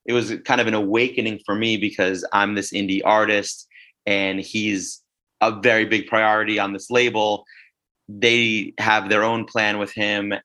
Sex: male